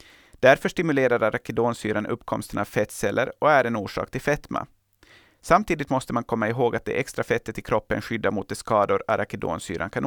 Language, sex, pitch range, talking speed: Swedish, male, 110-135 Hz, 175 wpm